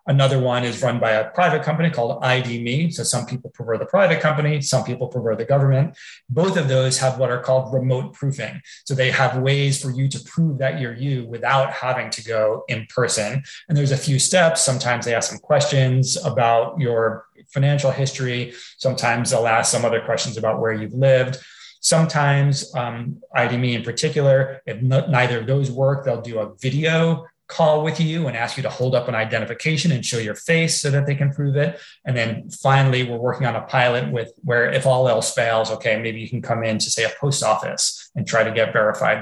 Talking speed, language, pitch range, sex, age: 210 wpm, English, 120-145 Hz, male, 30-49